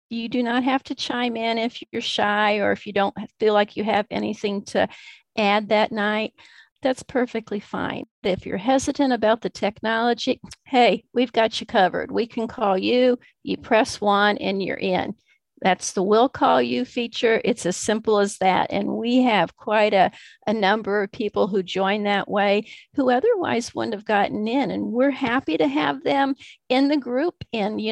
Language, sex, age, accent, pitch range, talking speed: English, female, 50-69, American, 205-250 Hz, 190 wpm